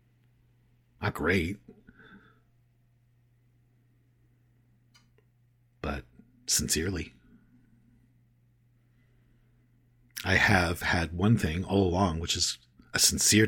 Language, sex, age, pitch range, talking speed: English, male, 50-69, 90-120 Hz, 65 wpm